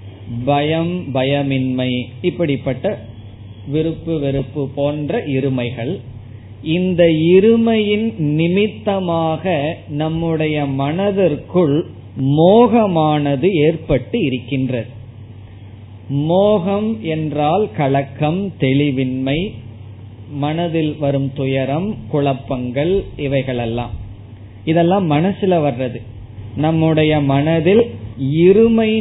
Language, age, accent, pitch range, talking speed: Tamil, 20-39, native, 130-175 Hz, 60 wpm